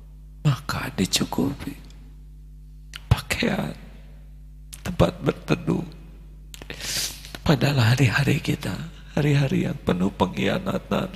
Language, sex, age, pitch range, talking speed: Indonesian, male, 50-69, 145-155 Hz, 65 wpm